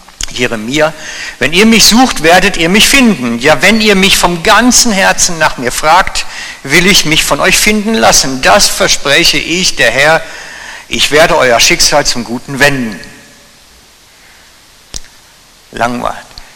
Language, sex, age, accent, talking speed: German, male, 60-79, German, 140 wpm